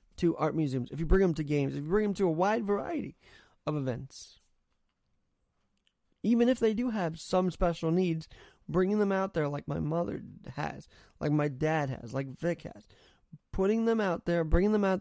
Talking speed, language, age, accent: 195 wpm, English, 20-39, American